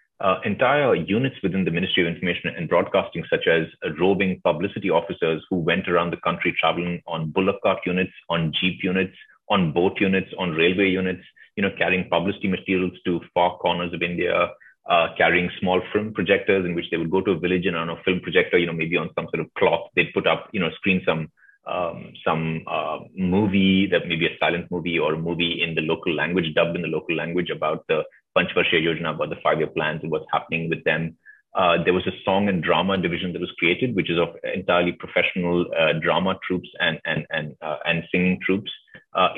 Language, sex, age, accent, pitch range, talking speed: Bengali, male, 30-49, native, 85-95 Hz, 210 wpm